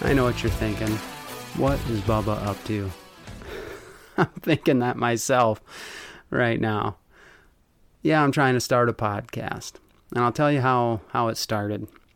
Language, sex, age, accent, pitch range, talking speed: English, male, 30-49, American, 110-130 Hz, 155 wpm